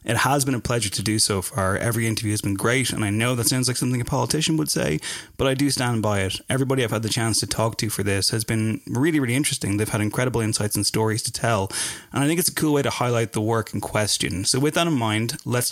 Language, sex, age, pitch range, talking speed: English, male, 30-49, 105-130 Hz, 280 wpm